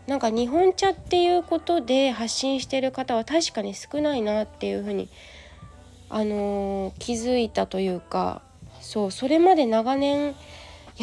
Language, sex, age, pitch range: Japanese, female, 20-39, 215-290 Hz